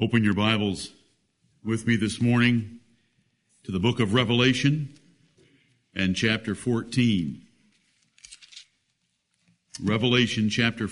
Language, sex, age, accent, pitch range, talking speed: English, male, 60-79, American, 110-130 Hz, 95 wpm